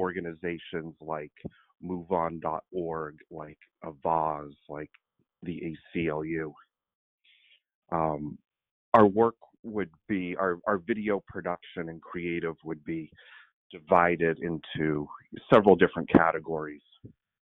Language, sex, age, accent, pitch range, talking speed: English, male, 40-59, American, 80-95 Hz, 90 wpm